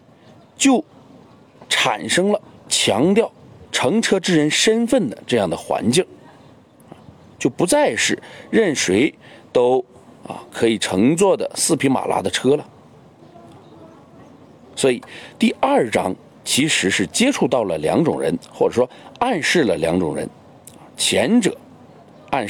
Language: Chinese